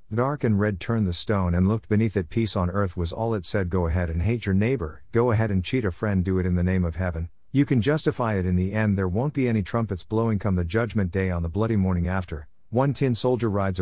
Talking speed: 270 wpm